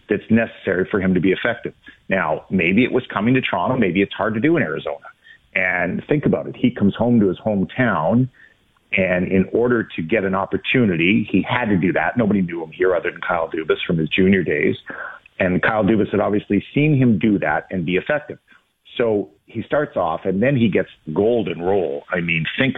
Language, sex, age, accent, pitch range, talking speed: English, male, 50-69, American, 95-115 Hz, 210 wpm